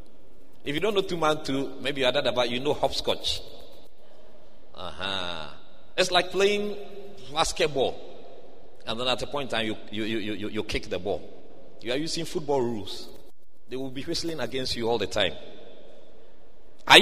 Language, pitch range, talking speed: English, 105-140 Hz, 175 wpm